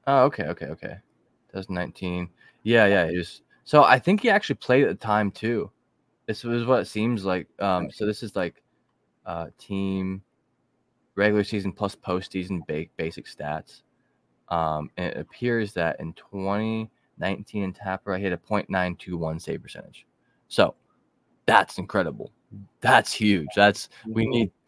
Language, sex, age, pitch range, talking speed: English, male, 20-39, 85-105 Hz, 150 wpm